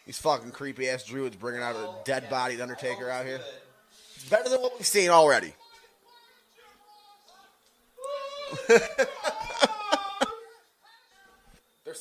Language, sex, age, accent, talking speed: English, male, 30-49, American, 105 wpm